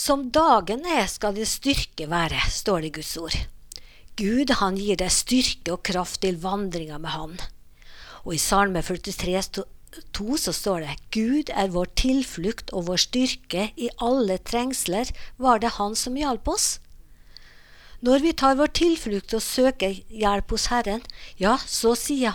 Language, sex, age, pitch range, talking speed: English, female, 50-69, 180-250 Hz, 165 wpm